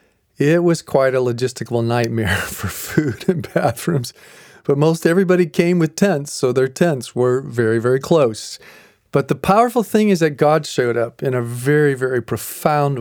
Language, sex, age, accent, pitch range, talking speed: English, male, 40-59, American, 125-170 Hz, 170 wpm